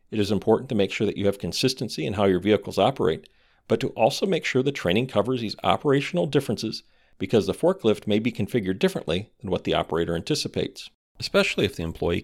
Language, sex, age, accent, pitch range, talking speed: English, male, 40-59, American, 100-135 Hz, 205 wpm